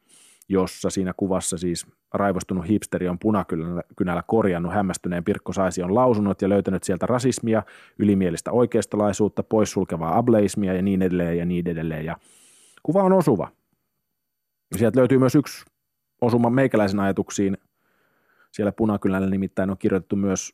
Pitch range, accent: 90-105 Hz, native